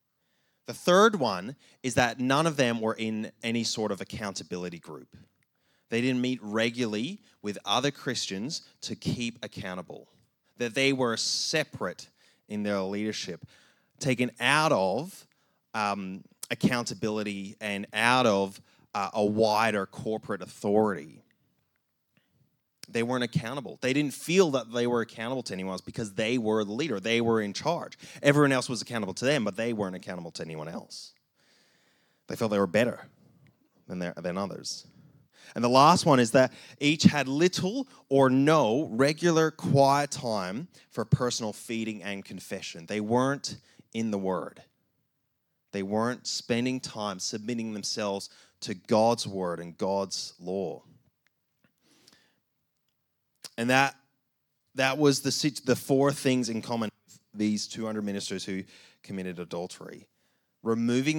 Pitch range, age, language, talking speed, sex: 100-130 Hz, 20-39, English, 140 wpm, male